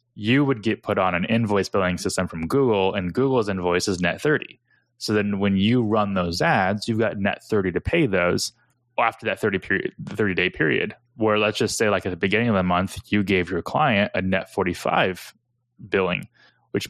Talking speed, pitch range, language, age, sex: 205 wpm, 90-115 Hz, English, 20-39, male